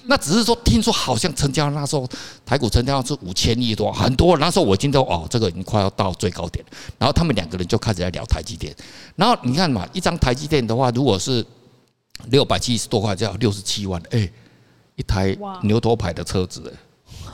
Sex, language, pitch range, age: male, Chinese, 105-160 Hz, 50-69